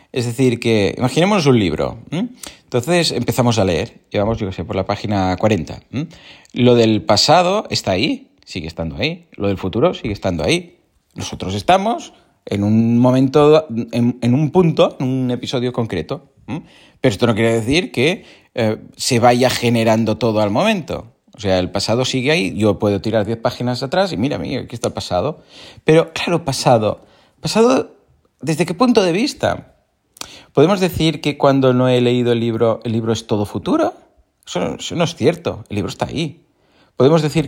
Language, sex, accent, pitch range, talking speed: Spanish, male, Spanish, 110-150 Hz, 180 wpm